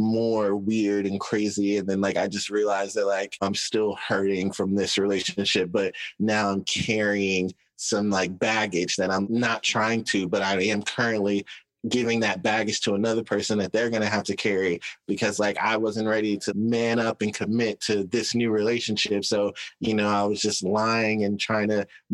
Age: 20-39